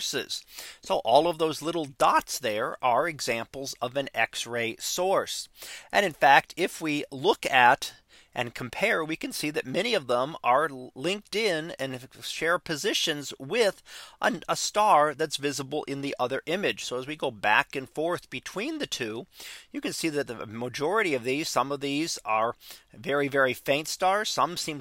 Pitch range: 135-190 Hz